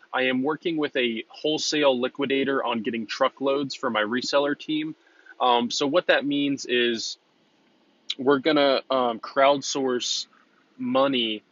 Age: 20-39